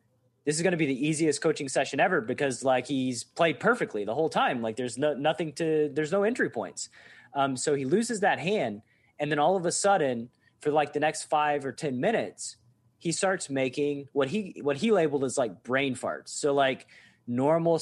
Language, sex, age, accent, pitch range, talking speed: English, male, 30-49, American, 130-165 Hz, 210 wpm